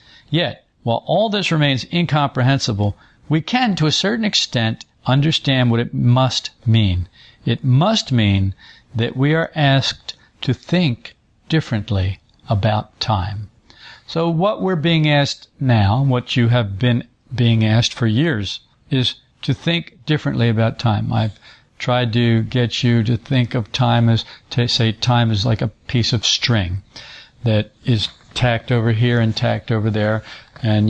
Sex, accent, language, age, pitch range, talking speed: male, American, English, 60-79, 110-130 Hz, 150 wpm